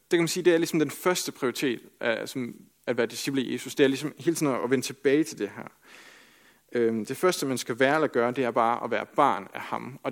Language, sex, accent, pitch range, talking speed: Danish, male, native, 130-160 Hz, 255 wpm